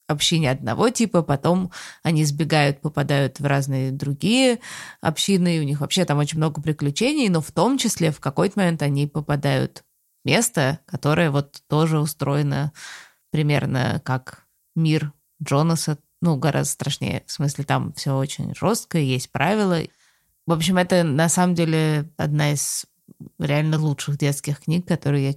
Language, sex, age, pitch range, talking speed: Russian, female, 20-39, 140-165 Hz, 150 wpm